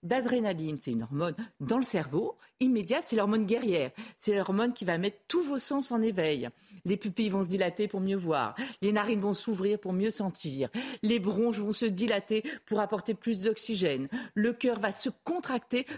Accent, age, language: French, 50-69, French